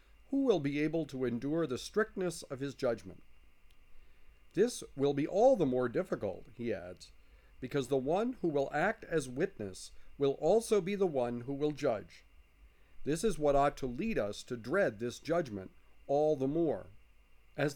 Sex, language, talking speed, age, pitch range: male, English, 170 wpm, 50-69, 110-170 Hz